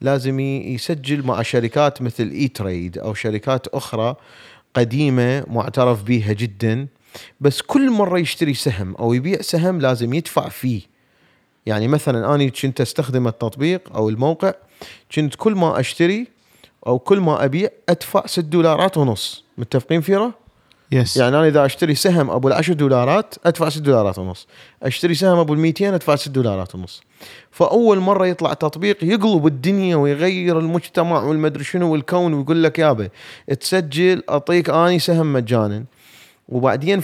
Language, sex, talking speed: Arabic, male, 140 wpm